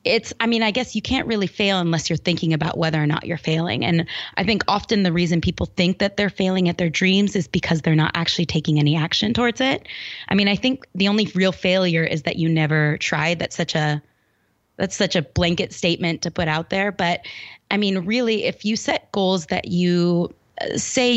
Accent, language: American, English